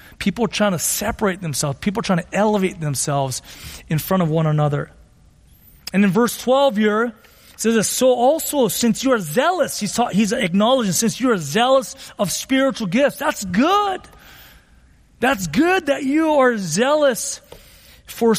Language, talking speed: English, 165 wpm